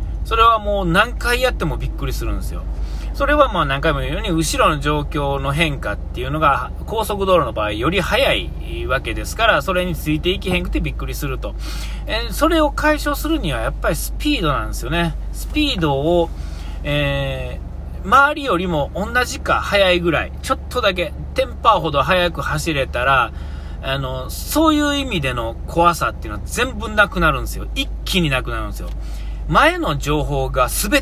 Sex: male